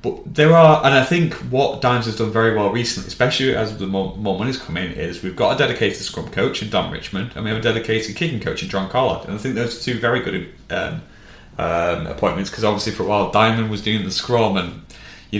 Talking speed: 250 wpm